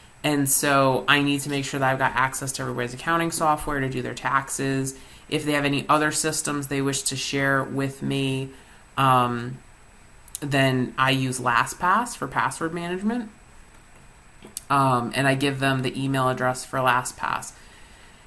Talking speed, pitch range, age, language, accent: 160 wpm, 135-160 Hz, 30-49, English, American